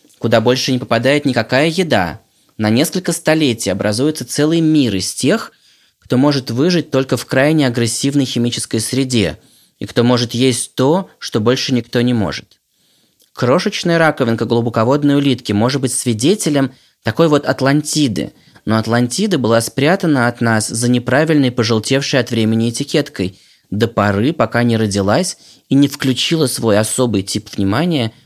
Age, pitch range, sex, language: 20-39, 110-140 Hz, male, Russian